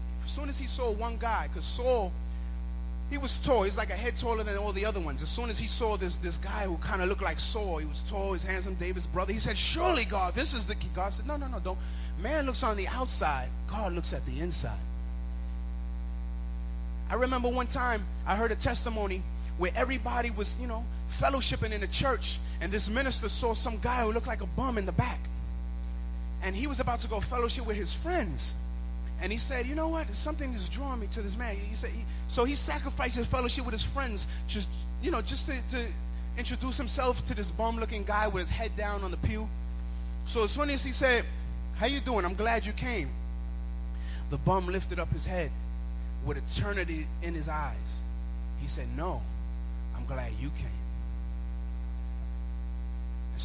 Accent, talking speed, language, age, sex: American, 205 wpm, English, 30-49, male